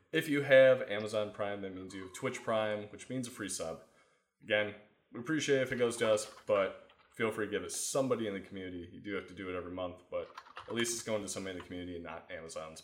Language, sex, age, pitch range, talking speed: English, male, 20-39, 95-130 Hz, 265 wpm